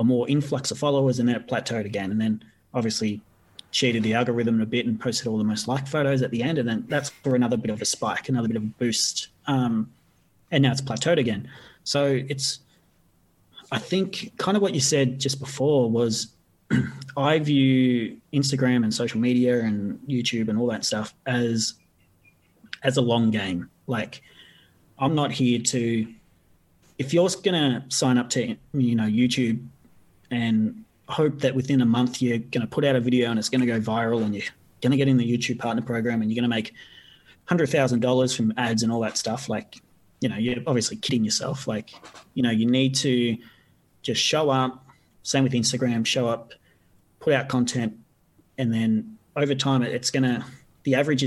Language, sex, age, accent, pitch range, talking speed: English, male, 30-49, Australian, 115-135 Hz, 195 wpm